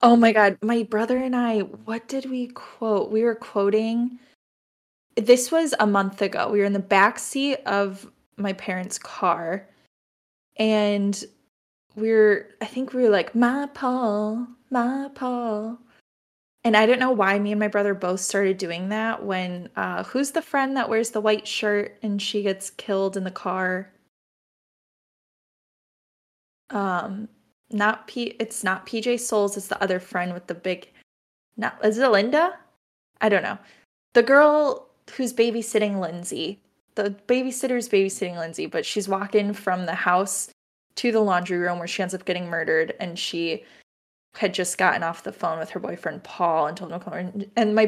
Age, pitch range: 10-29, 195-240 Hz